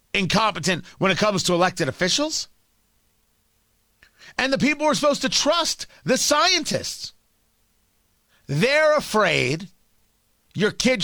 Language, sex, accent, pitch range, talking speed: English, male, American, 175-245 Hz, 110 wpm